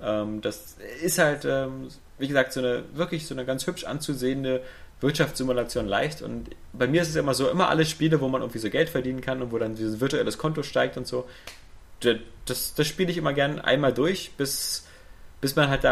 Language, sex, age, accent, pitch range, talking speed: German, male, 30-49, German, 110-135 Hz, 205 wpm